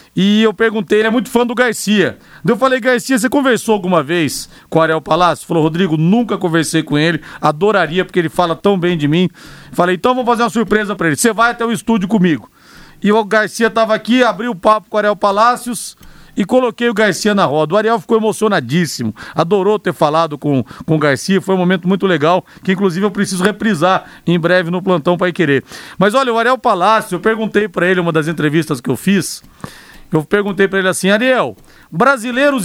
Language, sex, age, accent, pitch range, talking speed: Portuguese, male, 40-59, Brazilian, 175-225 Hz, 215 wpm